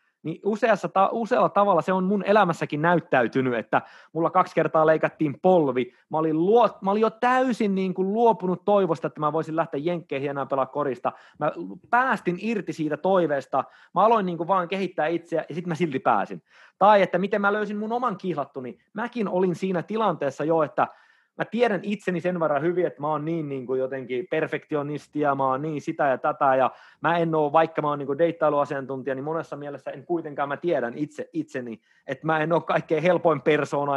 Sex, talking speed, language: male, 200 wpm, Finnish